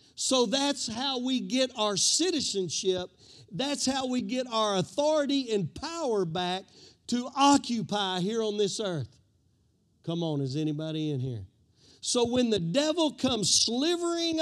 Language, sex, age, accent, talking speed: English, male, 50-69, American, 140 wpm